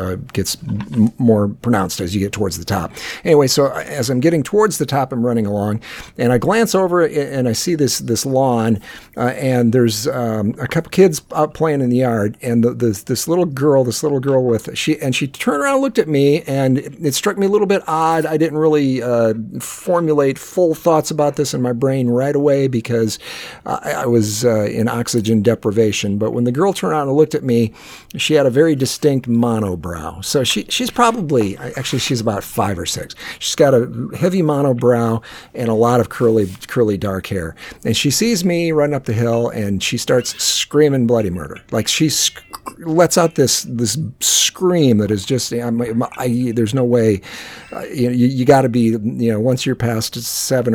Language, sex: English, male